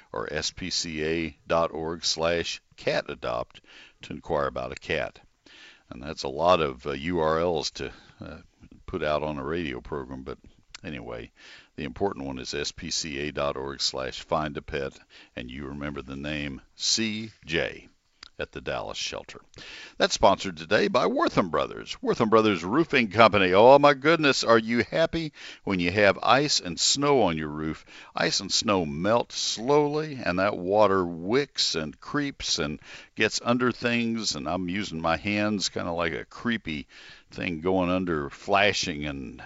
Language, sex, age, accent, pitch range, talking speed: English, male, 60-79, American, 75-110 Hz, 150 wpm